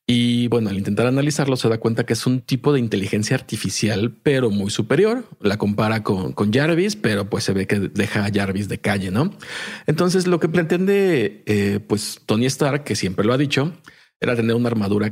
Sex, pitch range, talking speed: male, 105-150 Hz, 205 wpm